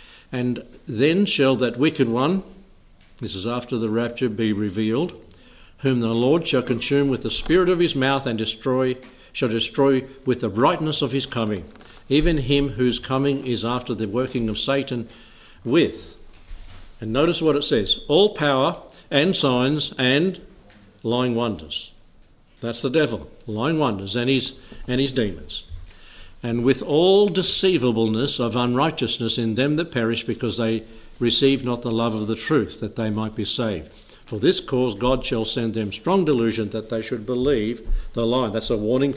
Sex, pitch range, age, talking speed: male, 110-135 Hz, 60-79, 165 wpm